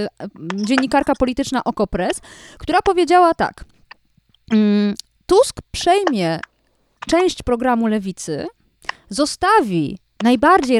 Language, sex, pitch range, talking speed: Polish, female, 220-305 Hz, 70 wpm